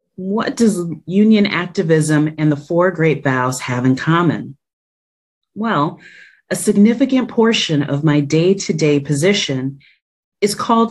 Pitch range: 145-190 Hz